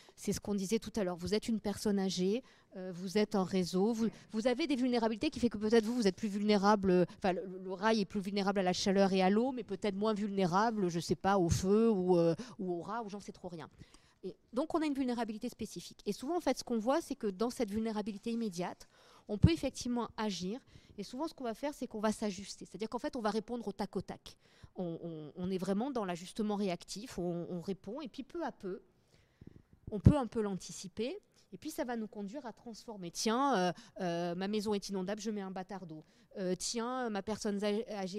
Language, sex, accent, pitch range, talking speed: French, female, French, 190-235 Hz, 240 wpm